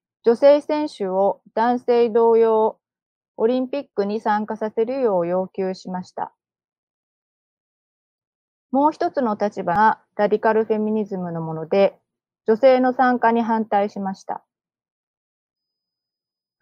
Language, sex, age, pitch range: Japanese, female, 30-49, 190-260 Hz